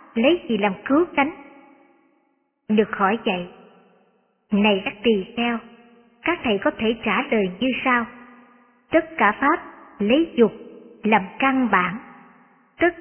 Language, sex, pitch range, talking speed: Vietnamese, male, 215-280 Hz, 135 wpm